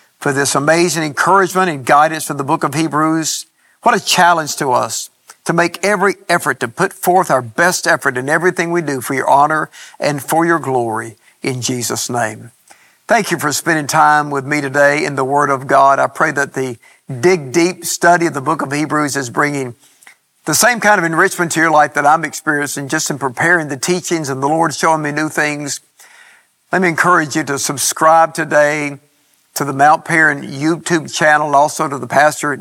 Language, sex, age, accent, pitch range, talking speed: English, male, 50-69, American, 145-175 Hz, 200 wpm